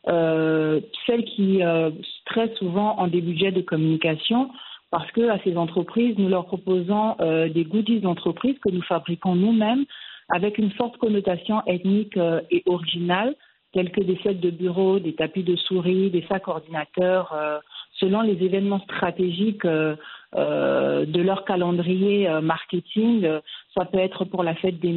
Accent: French